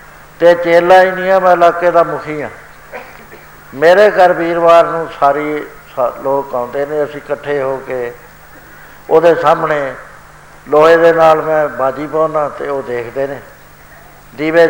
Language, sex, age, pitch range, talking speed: Punjabi, male, 60-79, 145-165 Hz, 135 wpm